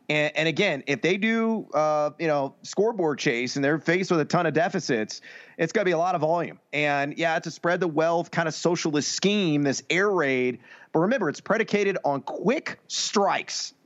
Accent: American